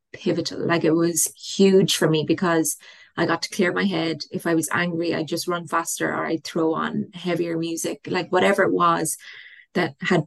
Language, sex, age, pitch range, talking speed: English, female, 20-39, 170-210 Hz, 200 wpm